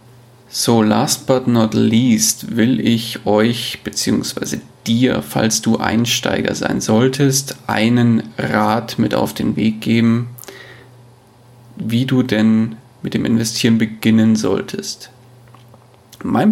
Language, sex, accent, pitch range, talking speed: German, male, German, 115-130 Hz, 115 wpm